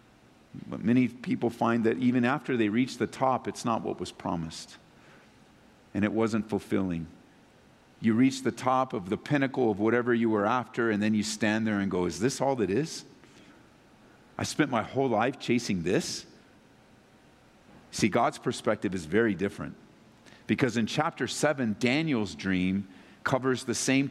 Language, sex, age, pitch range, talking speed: English, male, 50-69, 115-150 Hz, 165 wpm